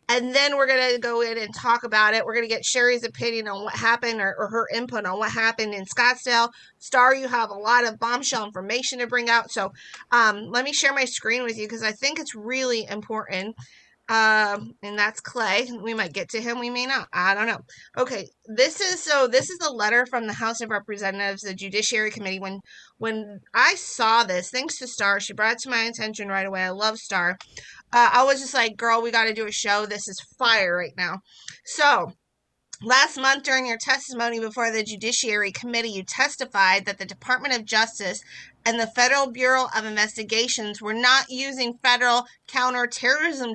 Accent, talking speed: American, 205 wpm